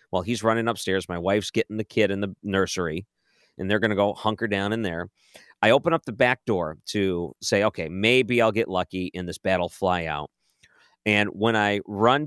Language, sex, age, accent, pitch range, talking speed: English, male, 40-59, American, 90-120 Hz, 210 wpm